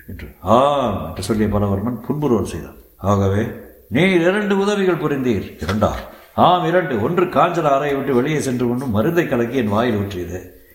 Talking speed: 100 wpm